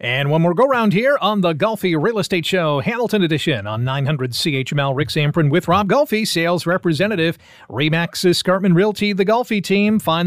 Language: English